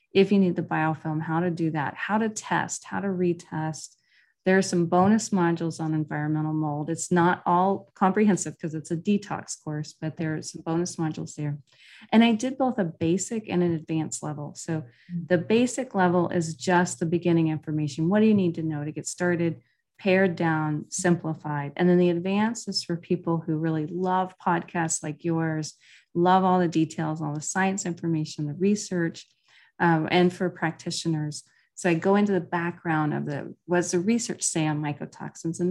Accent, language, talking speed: American, English, 190 wpm